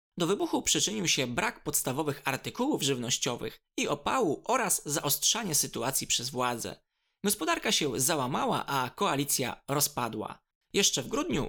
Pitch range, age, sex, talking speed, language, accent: 130-200 Hz, 20-39, male, 125 wpm, Polish, native